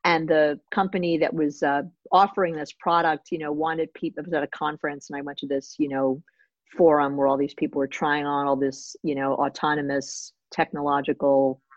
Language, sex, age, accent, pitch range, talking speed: English, female, 50-69, American, 145-170 Hz, 195 wpm